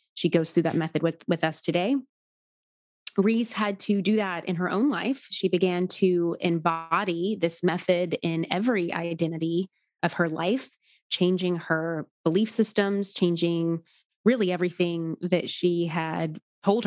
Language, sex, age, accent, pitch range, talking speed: English, female, 20-39, American, 165-200 Hz, 145 wpm